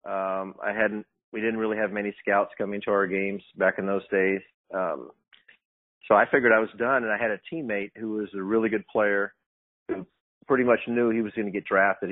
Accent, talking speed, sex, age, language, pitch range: American, 220 wpm, male, 40-59, English, 100-115 Hz